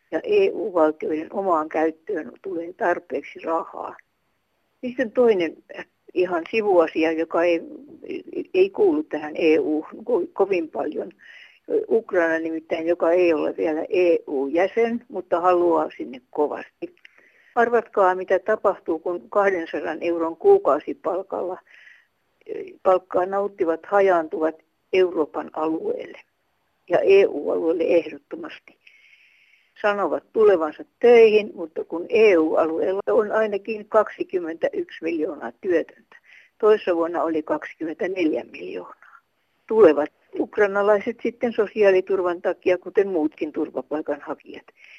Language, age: Finnish, 60-79